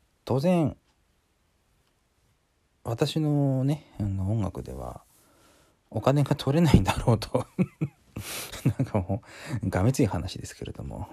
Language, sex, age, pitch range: Japanese, male, 40-59, 95-135 Hz